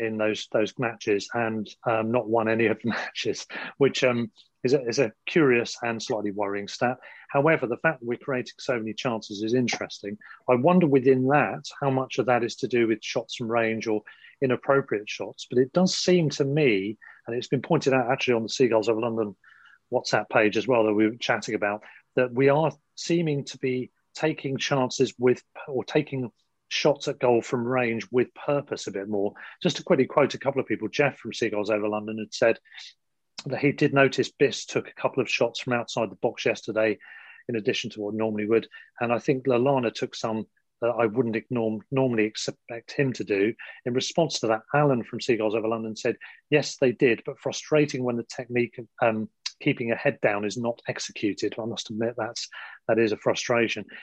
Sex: male